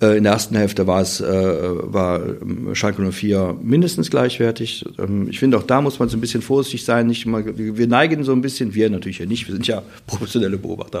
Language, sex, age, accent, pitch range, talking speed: German, male, 50-69, German, 110-130 Hz, 220 wpm